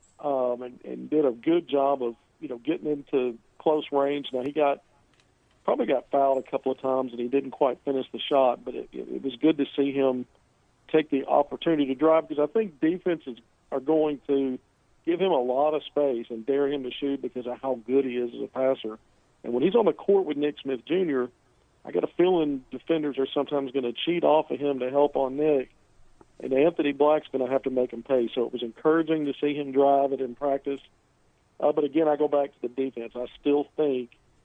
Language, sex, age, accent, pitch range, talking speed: English, male, 50-69, American, 130-150 Hz, 230 wpm